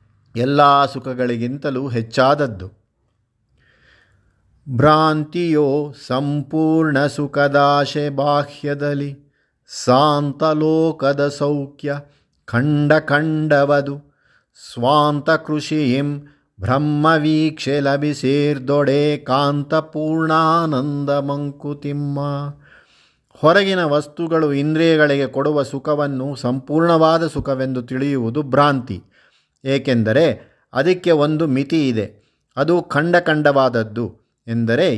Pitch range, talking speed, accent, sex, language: 130-150 Hz, 60 wpm, native, male, Kannada